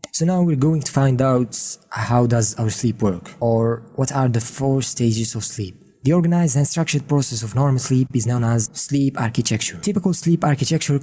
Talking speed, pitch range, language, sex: 195 wpm, 115-140 Hz, English, male